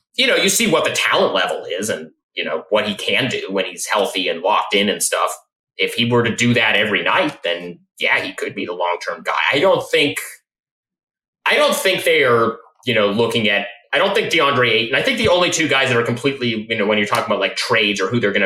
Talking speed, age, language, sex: 255 wpm, 30-49, English, male